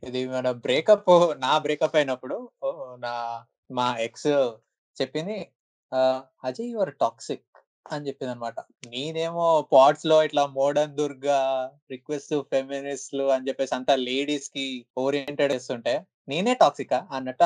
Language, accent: Telugu, native